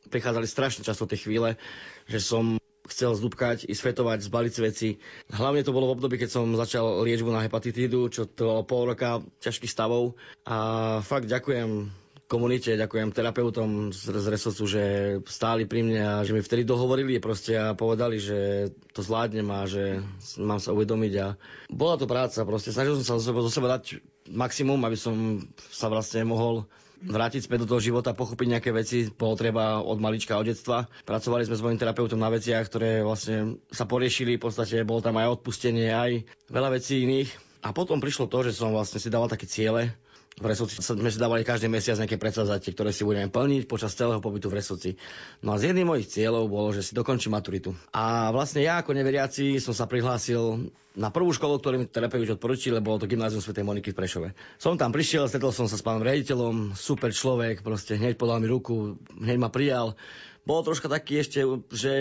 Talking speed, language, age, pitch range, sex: 190 wpm, Slovak, 20-39, 110-125 Hz, male